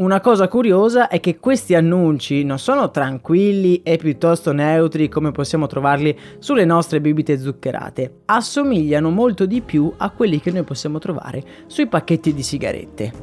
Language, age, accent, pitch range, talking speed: Italian, 20-39, native, 145-180 Hz, 155 wpm